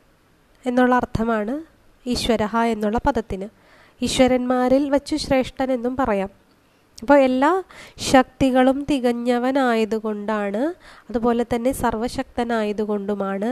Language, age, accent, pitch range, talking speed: Malayalam, 20-39, native, 225-265 Hz, 70 wpm